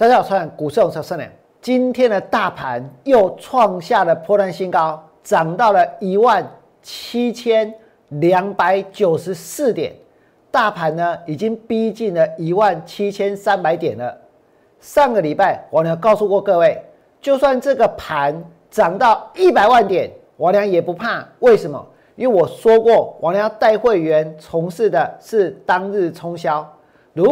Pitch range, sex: 175-240 Hz, male